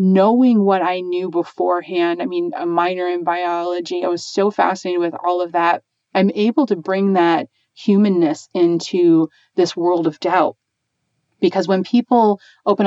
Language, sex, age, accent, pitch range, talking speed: English, female, 30-49, American, 180-225 Hz, 160 wpm